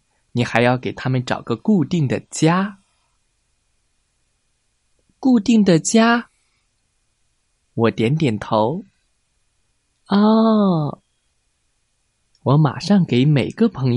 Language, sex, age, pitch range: Chinese, male, 20-39, 115-185 Hz